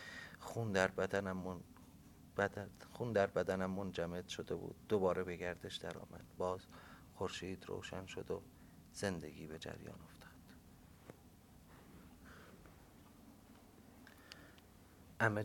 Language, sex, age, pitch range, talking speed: Persian, male, 30-49, 85-95 Hz, 90 wpm